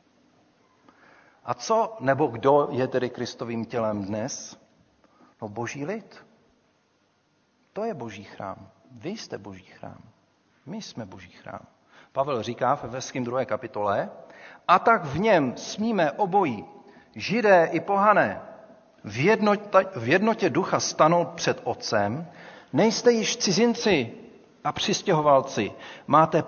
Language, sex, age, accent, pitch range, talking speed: Czech, male, 40-59, native, 135-200 Hz, 115 wpm